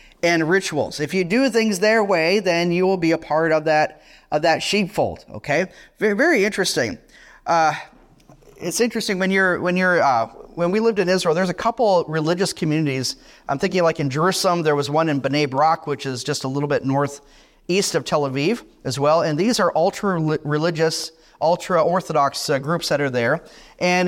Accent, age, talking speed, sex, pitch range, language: American, 30-49, 190 wpm, male, 155-200 Hz, English